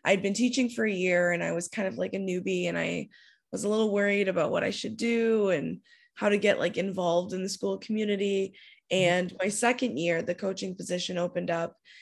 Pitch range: 175-220 Hz